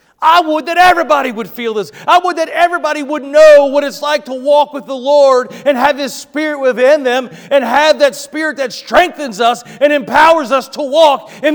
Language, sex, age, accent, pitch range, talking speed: English, male, 40-59, American, 210-285 Hz, 210 wpm